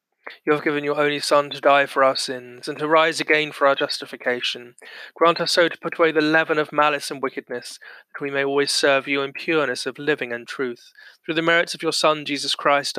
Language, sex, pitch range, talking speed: English, male, 125-150 Hz, 230 wpm